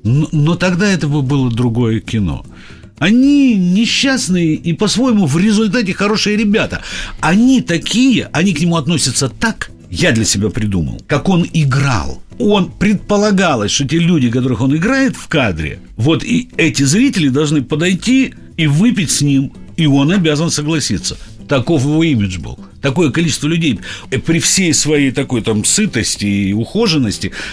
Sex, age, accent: male, 50-69, native